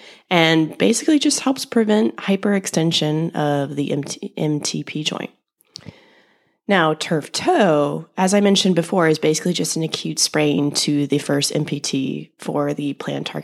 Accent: American